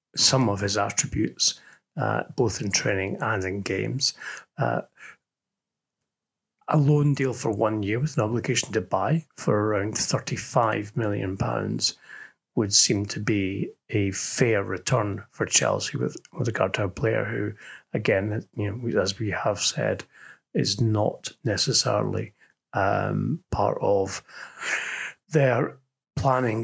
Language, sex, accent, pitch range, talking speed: English, male, British, 105-150 Hz, 130 wpm